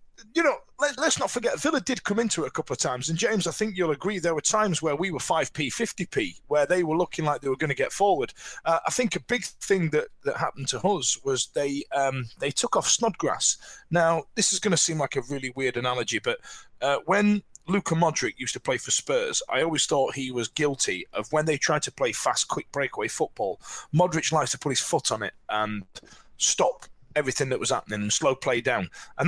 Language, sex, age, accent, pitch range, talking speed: English, male, 30-49, British, 135-195 Hz, 230 wpm